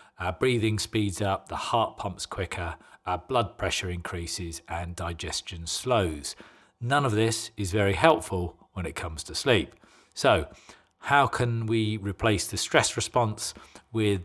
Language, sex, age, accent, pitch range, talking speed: English, male, 40-59, British, 95-115 Hz, 145 wpm